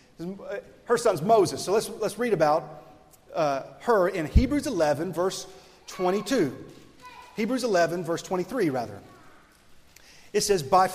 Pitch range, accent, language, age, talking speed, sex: 155-200 Hz, American, English, 40-59, 125 wpm, male